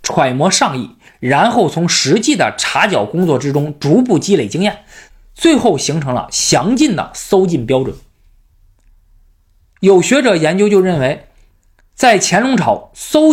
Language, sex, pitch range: Chinese, male, 140-225 Hz